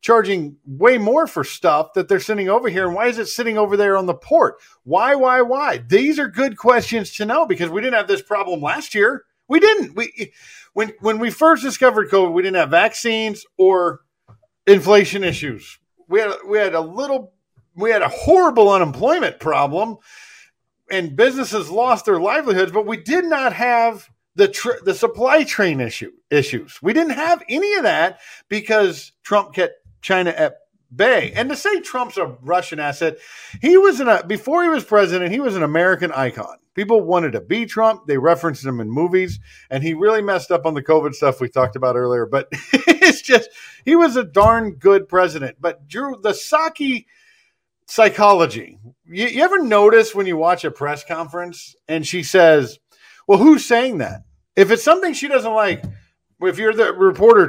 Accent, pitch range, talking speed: American, 175-275 Hz, 185 wpm